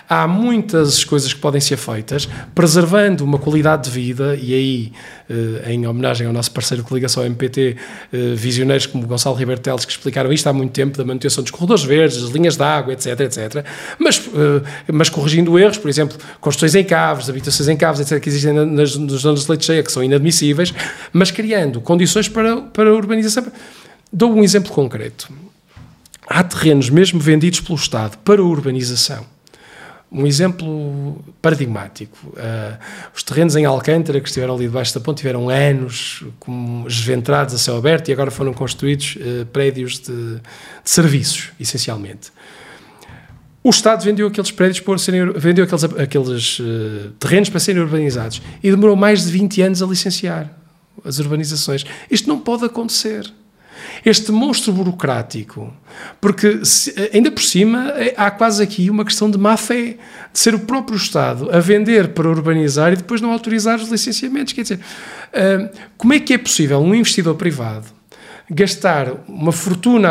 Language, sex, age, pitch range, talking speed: Portuguese, male, 20-39, 135-195 Hz, 160 wpm